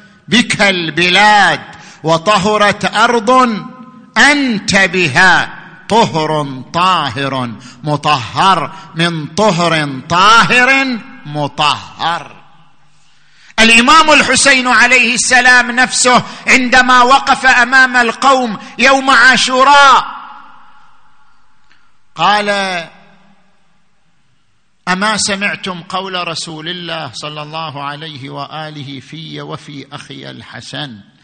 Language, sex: Arabic, male